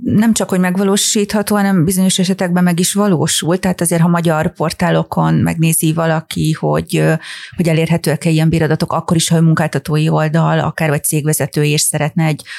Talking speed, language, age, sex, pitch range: 155 wpm, Hungarian, 30-49, female, 155-170 Hz